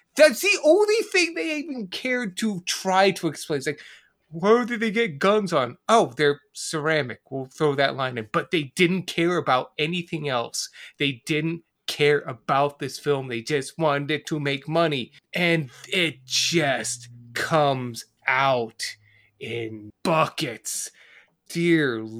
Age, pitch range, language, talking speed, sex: 20-39, 145-200 Hz, English, 145 wpm, male